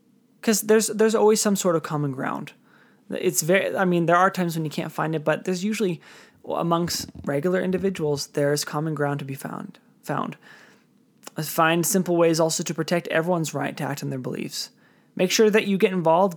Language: English